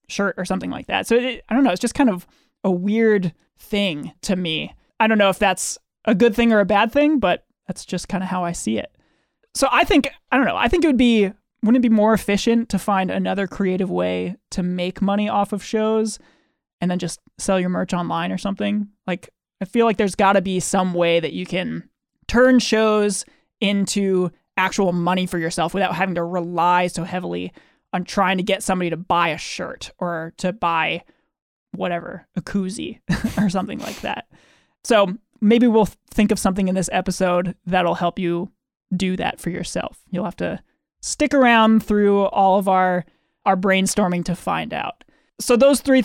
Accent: American